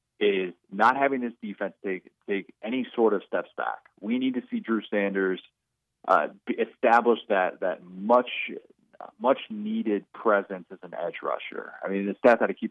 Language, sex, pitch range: English, male, 95-115 Hz